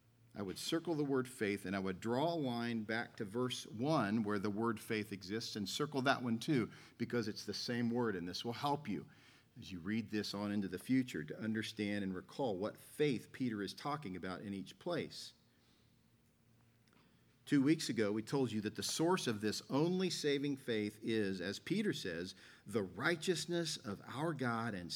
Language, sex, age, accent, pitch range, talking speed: English, male, 50-69, American, 110-145 Hz, 195 wpm